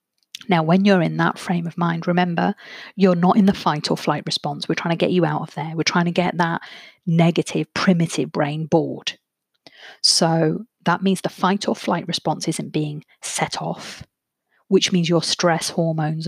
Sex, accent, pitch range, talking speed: female, British, 165-200 Hz, 190 wpm